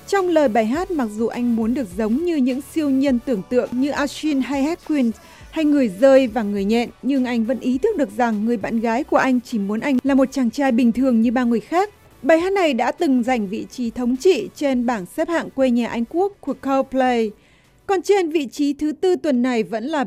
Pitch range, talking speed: 235-290 Hz, 245 wpm